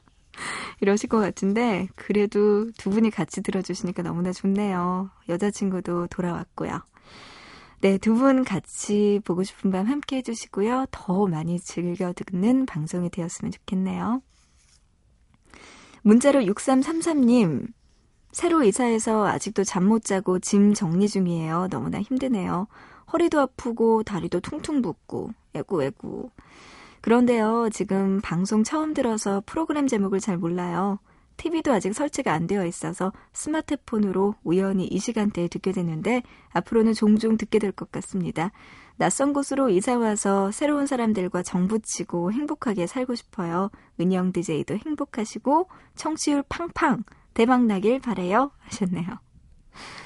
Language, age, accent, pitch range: Korean, 20-39, native, 185-245 Hz